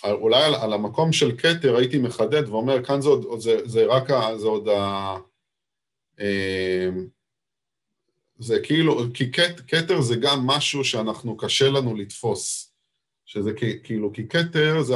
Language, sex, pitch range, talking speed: Hebrew, male, 105-150 Hz, 150 wpm